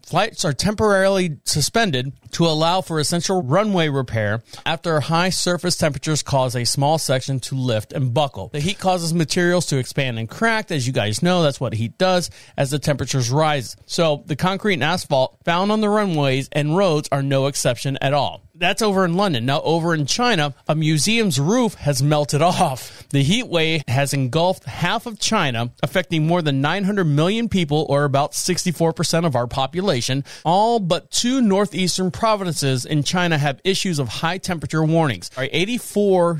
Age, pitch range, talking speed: 40-59, 145-185 Hz, 175 wpm